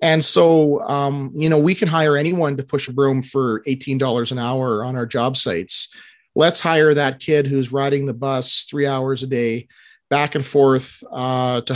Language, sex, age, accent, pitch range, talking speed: English, male, 30-49, American, 135-165 Hz, 195 wpm